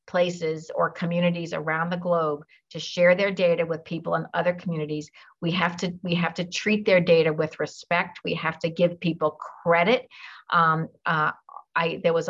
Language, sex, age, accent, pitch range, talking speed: English, female, 50-69, American, 170-200 Hz, 165 wpm